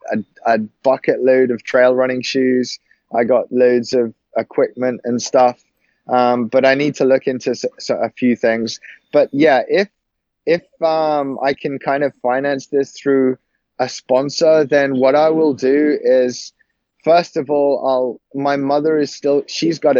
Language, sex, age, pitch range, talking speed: English, male, 20-39, 125-145 Hz, 165 wpm